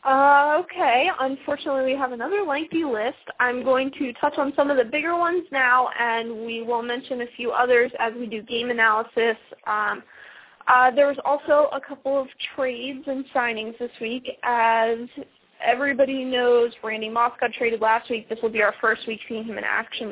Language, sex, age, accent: English, female, 20-39, American